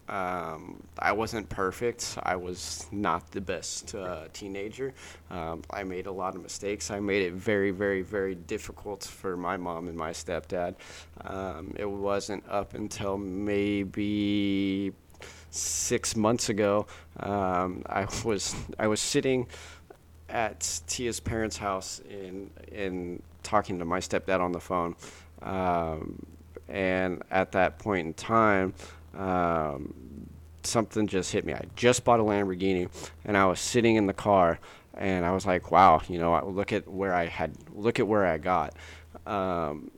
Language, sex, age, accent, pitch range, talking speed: English, male, 20-39, American, 85-100 Hz, 150 wpm